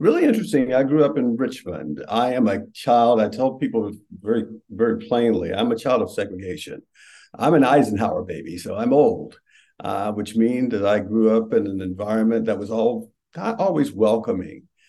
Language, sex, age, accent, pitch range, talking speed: English, male, 50-69, American, 100-115 Hz, 180 wpm